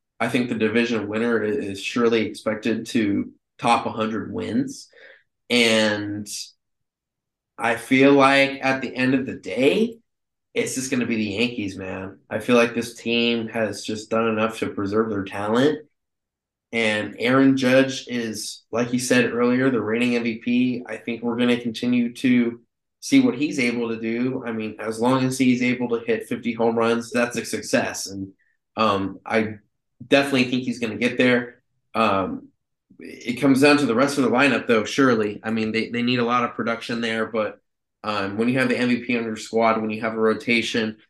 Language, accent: English, American